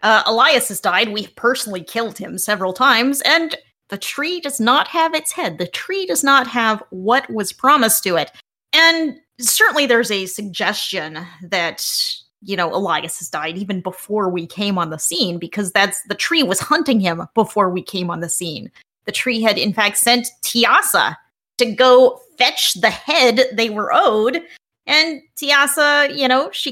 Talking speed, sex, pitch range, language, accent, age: 175 wpm, female, 200-280 Hz, English, American, 30-49